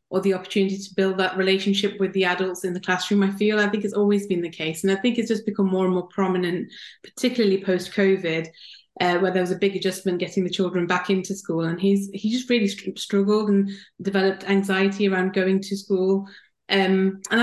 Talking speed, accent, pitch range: 215 wpm, British, 180-200 Hz